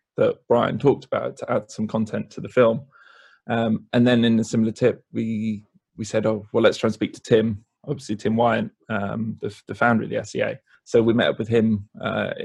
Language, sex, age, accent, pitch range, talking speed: English, male, 20-39, British, 110-120 Hz, 220 wpm